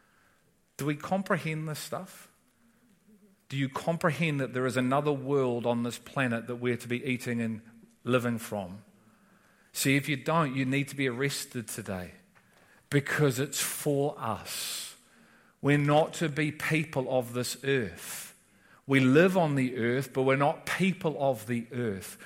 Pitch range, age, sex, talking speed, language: 130-165 Hz, 40-59, male, 155 wpm, English